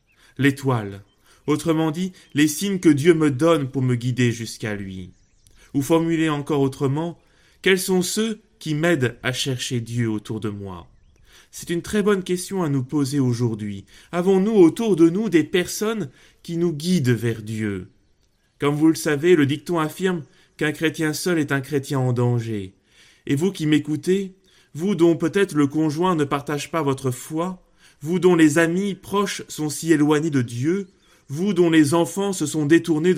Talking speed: 170 wpm